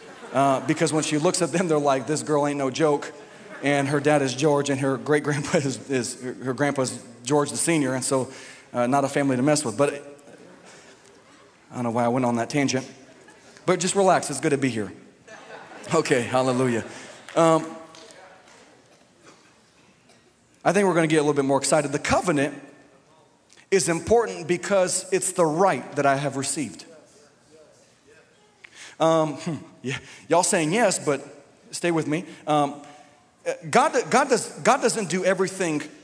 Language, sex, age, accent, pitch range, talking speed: English, male, 40-59, American, 140-185 Hz, 165 wpm